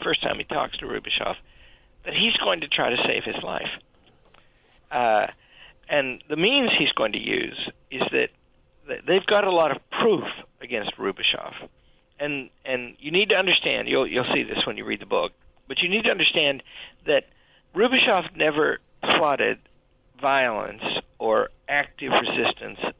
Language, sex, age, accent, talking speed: English, male, 50-69, American, 160 wpm